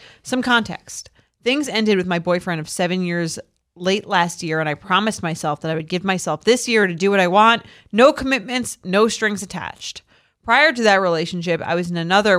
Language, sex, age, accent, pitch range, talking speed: English, female, 30-49, American, 165-210 Hz, 205 wpm